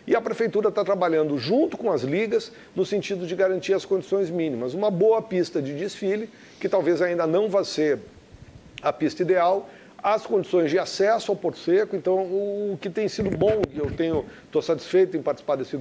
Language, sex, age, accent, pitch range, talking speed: Portuguese, male, 50-69, Brazilian, 170-210 Hz, 190 wpm